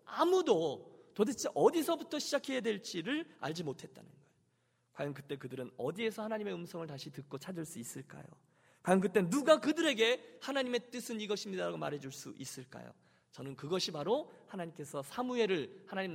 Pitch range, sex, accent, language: 155-260 Hz, male, native, Korean